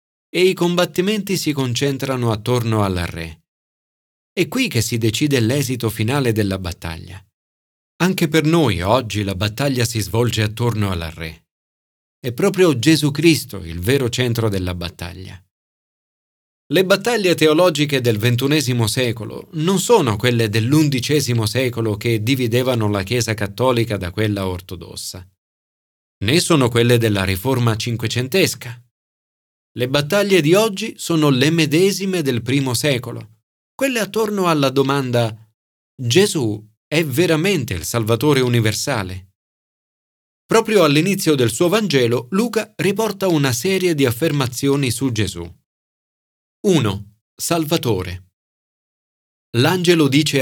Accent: native